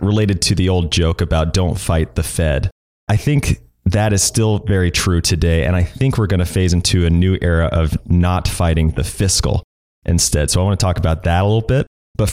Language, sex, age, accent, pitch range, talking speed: English, male, 30-49, American, 85-110 Hz, 225 wpm